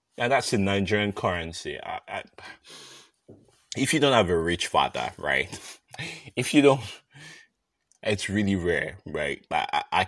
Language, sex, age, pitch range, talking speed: English, male, 20-39, 85-105 Hz, 135 wpm